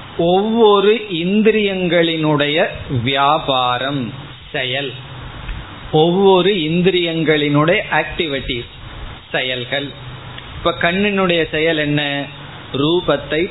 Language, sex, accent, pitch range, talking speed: Tamil, male, native, 135-175 Hz, 45 wpm